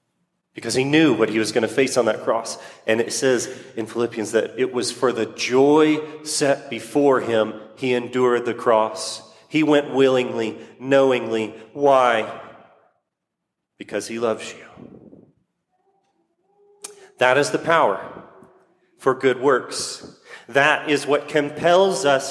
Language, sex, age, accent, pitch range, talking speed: English, male, 30-49, American, 110-165 Hz, 135 wpm